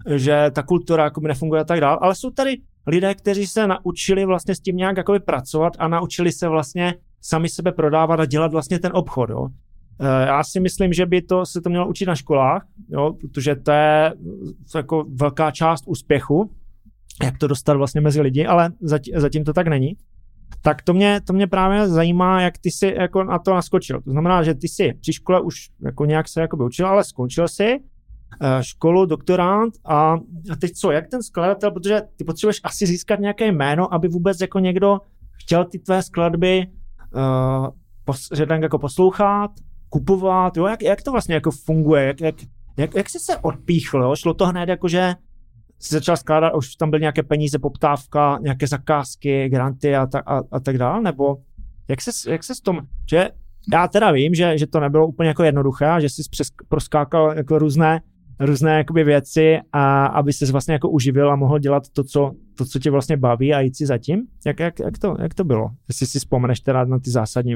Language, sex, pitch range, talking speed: Czech, male, 140-180 Hz, 195 wpm